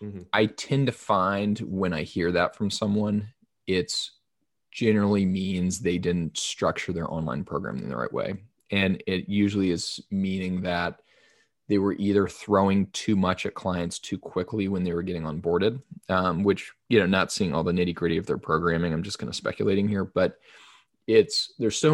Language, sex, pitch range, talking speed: English, male, 90-110 Hz, 185 wpm